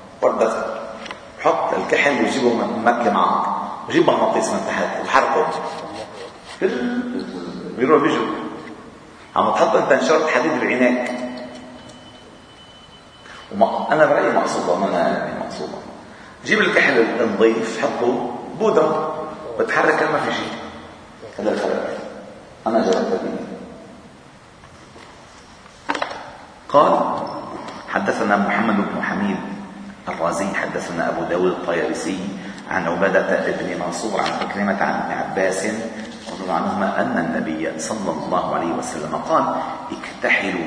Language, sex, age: Arabic, male, 50-69